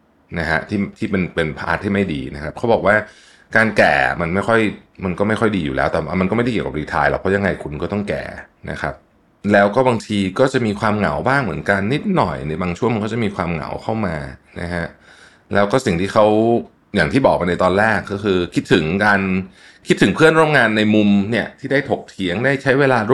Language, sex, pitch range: Thai, male, 90-115 Hz